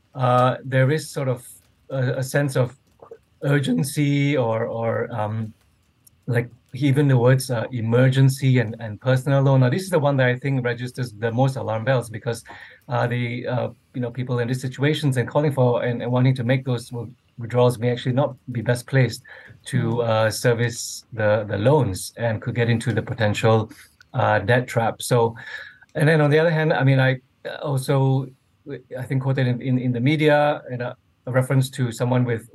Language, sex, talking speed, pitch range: English, male, 190 wpm, 115-135 Hz